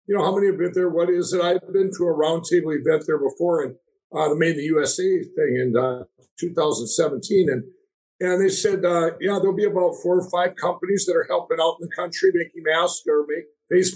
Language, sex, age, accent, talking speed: English, male, 60-79, American, 225 wpm